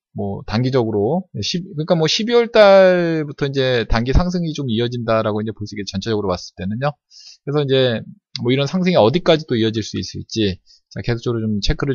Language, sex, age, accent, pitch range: Korean, male, 20-39, native, 105-155 Hz